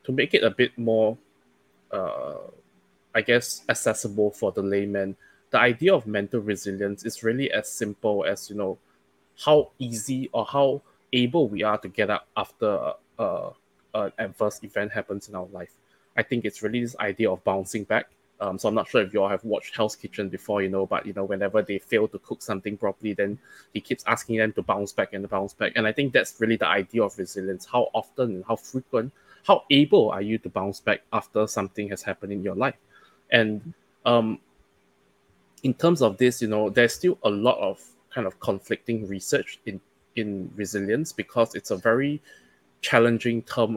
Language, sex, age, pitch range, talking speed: English, male, 20-39, 100-120 Hz, 195 wpm